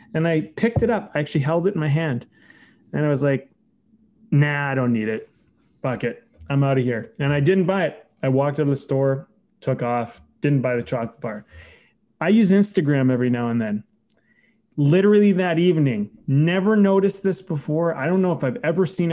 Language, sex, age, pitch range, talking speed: English, male, 20-39, 140-195 Hz, 205 wpm